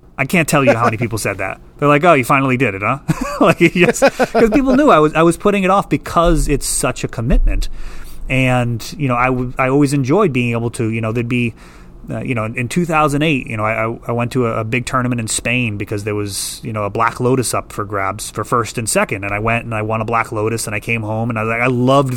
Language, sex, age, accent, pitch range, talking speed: English, male, 30-49, American, 110-145 Hz, 275 wpm